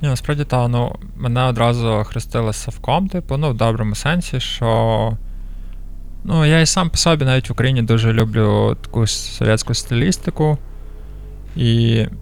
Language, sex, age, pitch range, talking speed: Ukrainian, male, 20-39, 105-125 Hz, 140 wpm